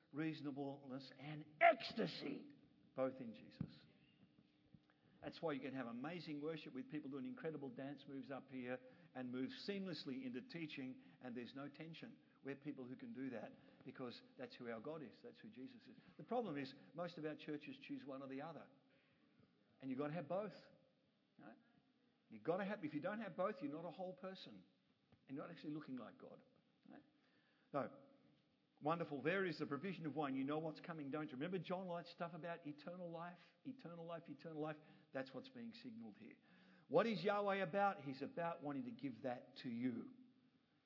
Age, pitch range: 50-69, 145-230 Hz